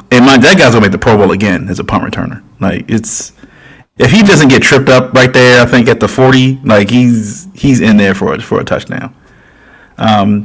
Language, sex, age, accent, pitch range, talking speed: English, male, 30-49, American, 105-130 Hz, 230 wpm